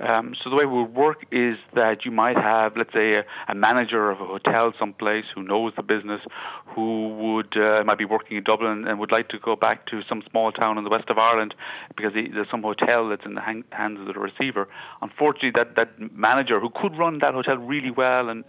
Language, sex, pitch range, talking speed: English, male, 100-115 Hz, 235 wpm